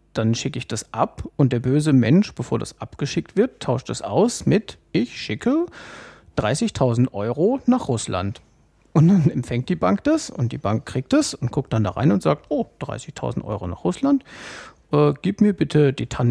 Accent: German